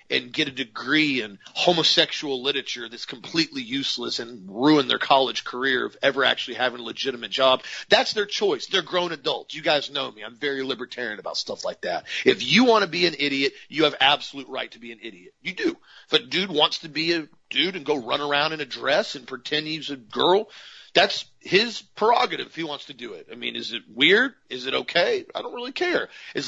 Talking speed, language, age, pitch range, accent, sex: 220 wpm, English, 40-59, 140-190 Hz, American, male